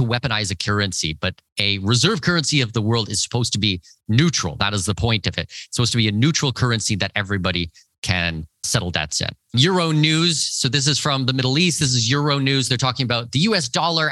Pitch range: 100-145 Hz